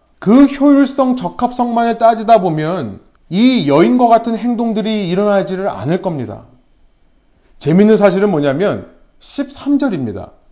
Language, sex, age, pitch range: Korean, male, 30-49, 170-235 Hz